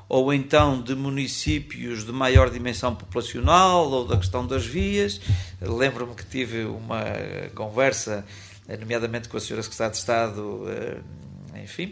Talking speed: 130 wpm